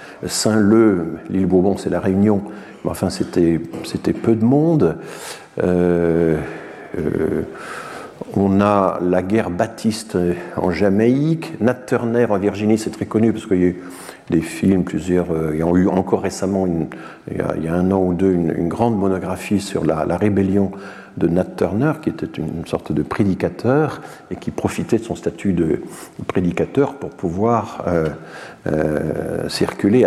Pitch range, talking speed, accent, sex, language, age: 85-110 Hz, 160 wpm, French, male, French, 50-69